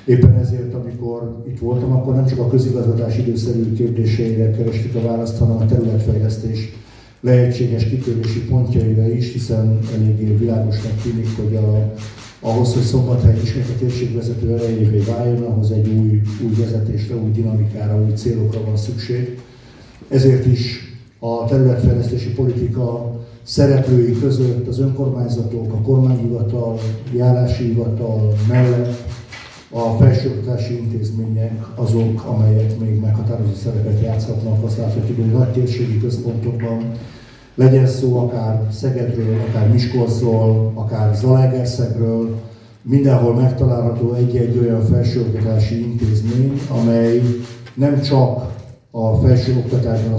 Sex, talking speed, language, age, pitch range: male, 110 wpm, Hungarian, 50-69, 110-125 Hz